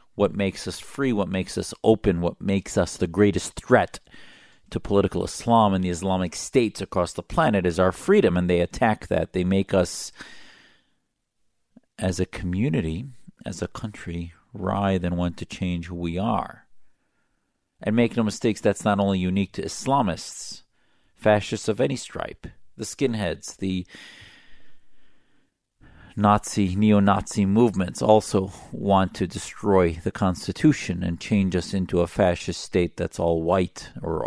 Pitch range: 85-105 Hz